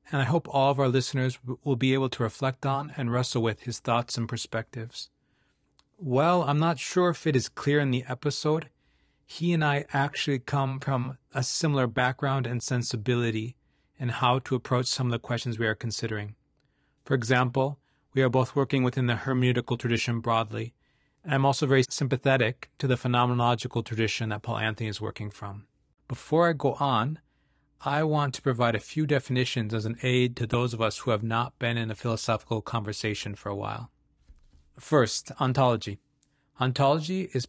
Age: 40-59